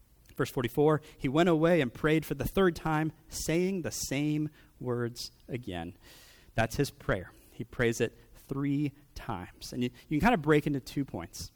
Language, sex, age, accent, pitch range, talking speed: English, male, 30-49, American, 110-150 Hz, 175 wpm